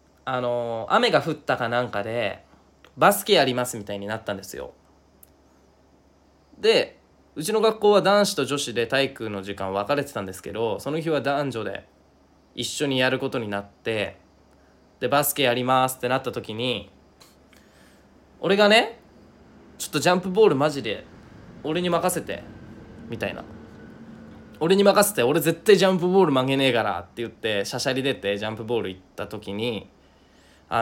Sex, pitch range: male, 95-155 Hz